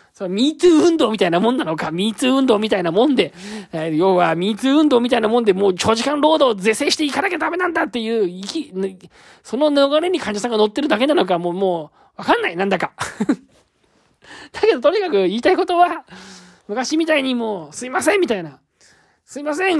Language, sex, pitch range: Japanese, male, 180-300 Hz